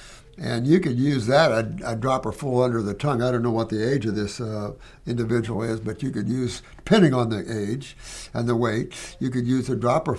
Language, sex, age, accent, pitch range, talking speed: English, male, 60-79, American, 115-145 Hz, 230 wpm